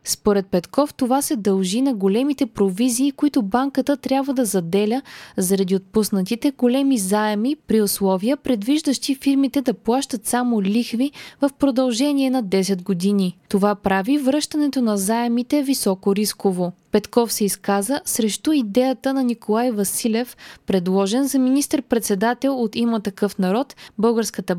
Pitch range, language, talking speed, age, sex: 195-265 Hz, Bulgarian, 130 wpm, 20-39, female